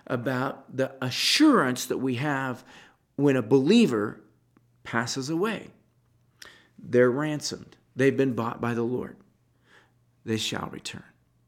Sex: male